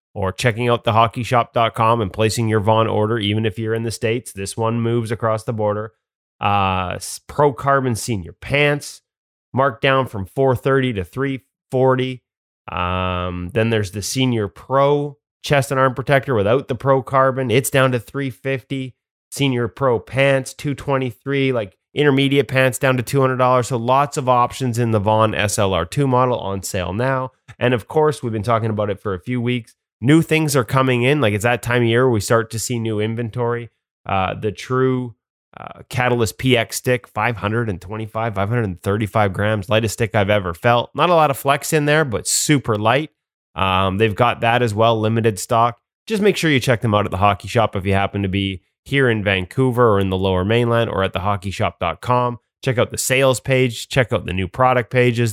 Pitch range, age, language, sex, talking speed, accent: 105-130 Hz, 30-49, English, male, 185 wpm, American